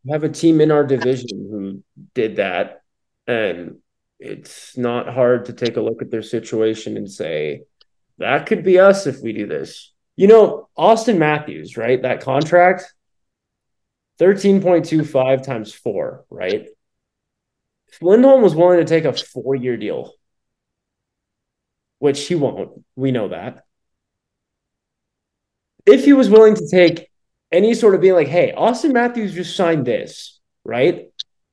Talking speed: 145 wpm